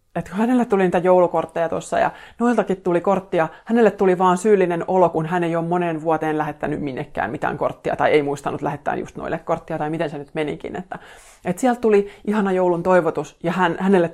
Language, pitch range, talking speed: Finnish, 160-195 Hz, 200 wpm